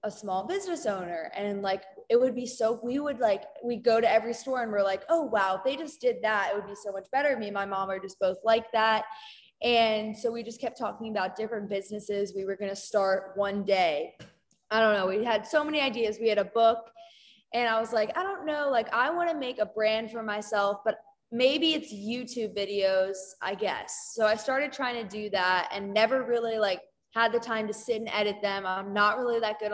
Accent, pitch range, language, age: American, 205-245 Hz, English, 20-39